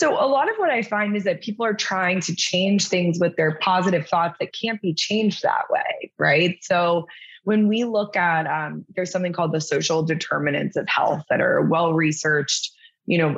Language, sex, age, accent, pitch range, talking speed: English, female, 20-39, American, 165-200 Hz, 200 wpm